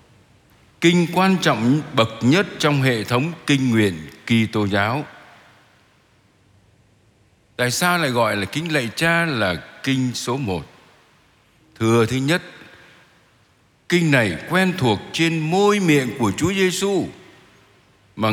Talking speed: 130 wpm